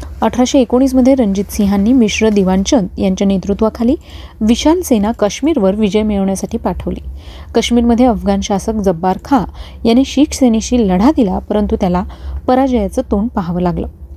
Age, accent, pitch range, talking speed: 30-49, native, 195-245 Hz, 125 wpm